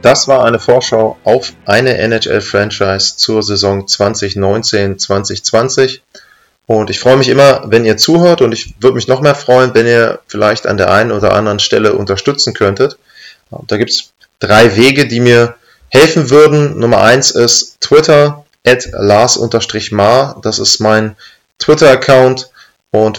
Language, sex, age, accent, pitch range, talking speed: German, male, 20-39, German, 110-130 Hz, 145 wpm